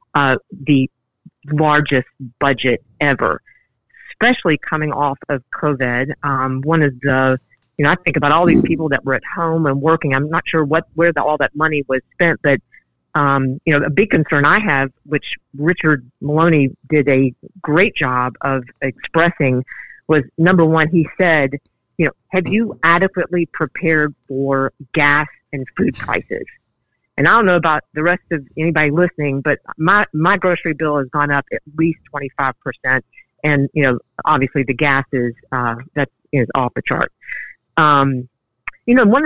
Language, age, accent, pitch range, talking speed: English, 50-69, American, 135-165 Hz, 170 wpm